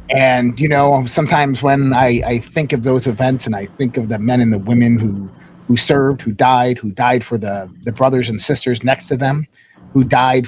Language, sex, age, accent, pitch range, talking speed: English, male, 40-59, American, 115-145 Hz, 220 wpm